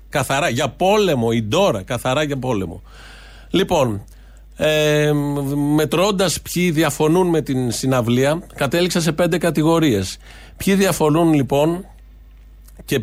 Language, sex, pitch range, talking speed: Greek, male, 125-170 Hz, 110 wpm